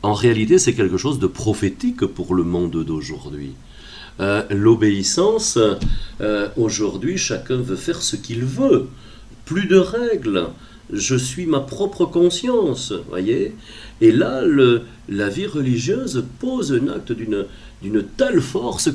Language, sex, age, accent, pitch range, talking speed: French, male, 40-59, French, 100-135 Hz, 135 wpm